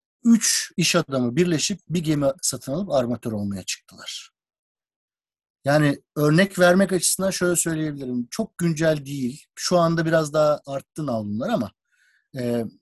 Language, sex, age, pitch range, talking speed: Turkish, male, 50-69, 130-190 Hz, 130 wpm